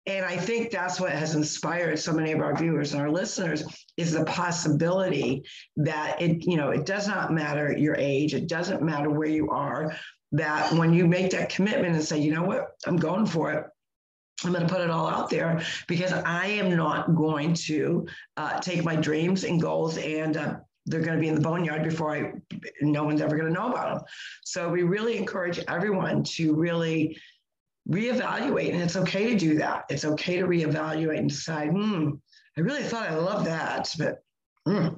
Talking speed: 200 wpm